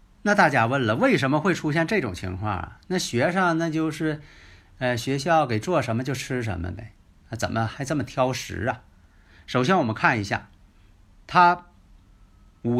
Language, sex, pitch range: Chinese, male, 100-145 Hz